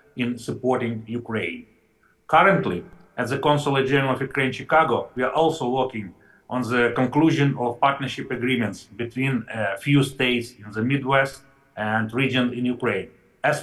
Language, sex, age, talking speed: English, male, 40-59, 145 wpm